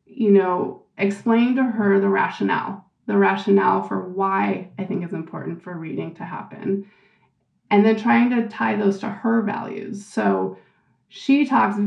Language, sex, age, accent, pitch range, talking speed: English, female, 20-39, American, 195-220 Hz, 155 wpm